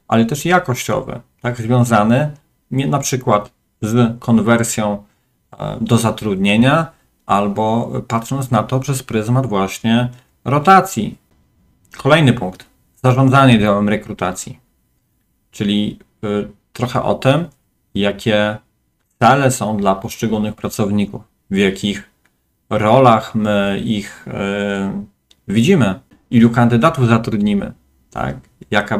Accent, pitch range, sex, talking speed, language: native, 105-125 Hz, male, 90 wpm, Polish